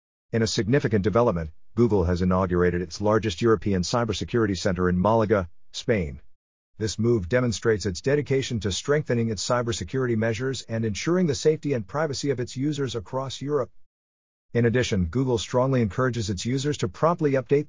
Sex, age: male, 50-69